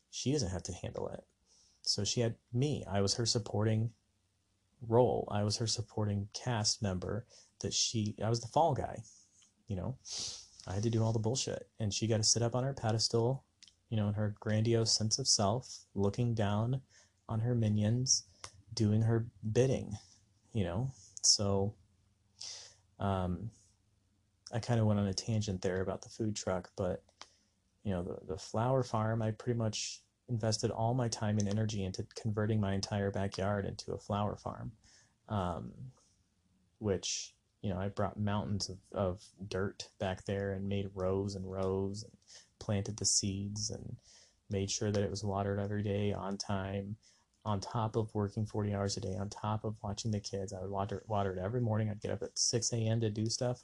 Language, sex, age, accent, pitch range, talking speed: English, male, 30-49, American, 100-110 Hz, 185 wpm